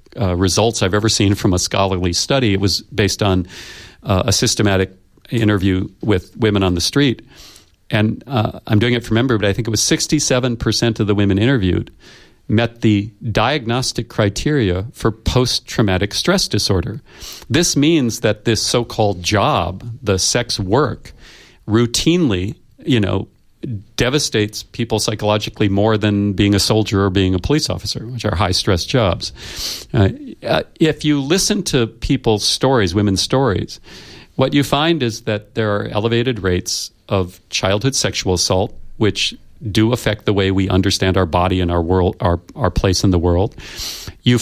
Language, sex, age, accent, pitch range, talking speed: English, male, 40-59, American, 100-120 Hz, 160 wpm